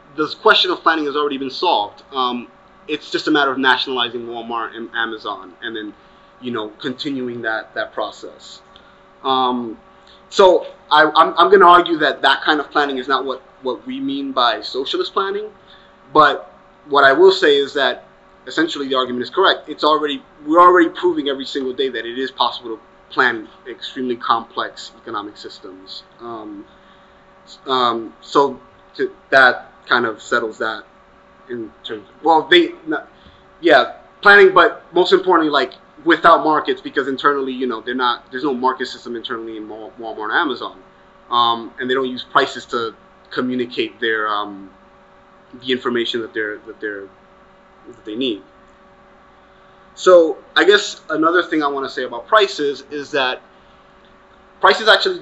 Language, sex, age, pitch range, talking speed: English, male, 30-49, 125-190 Hz, 160 wpm